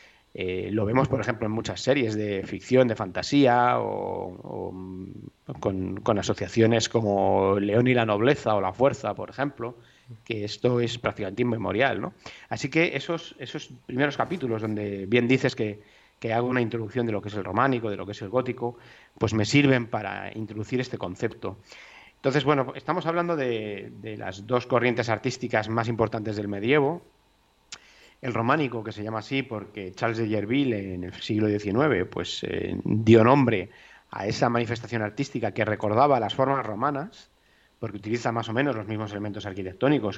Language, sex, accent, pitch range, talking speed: Spanish, male, Spanish, 105-125 Hz, 175 wpm